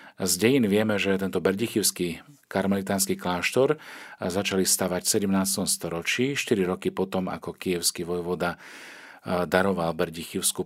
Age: 40-59